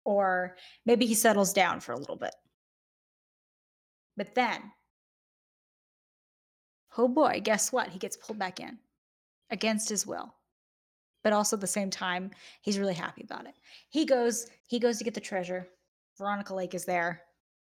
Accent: American